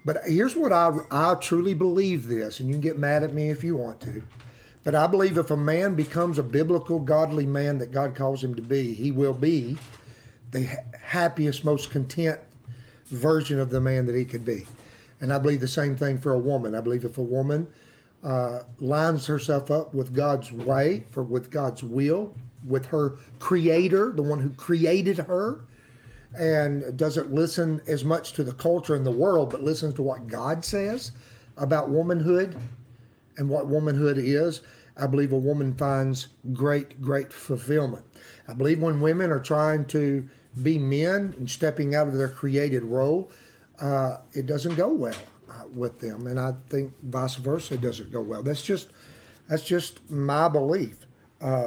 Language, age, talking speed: English, 50-69, 180 wpm